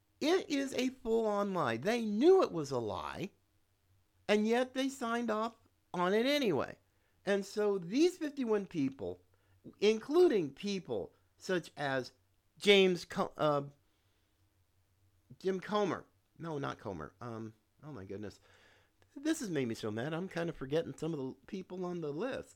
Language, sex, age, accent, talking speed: English, male, 50-69, American, 150 wpm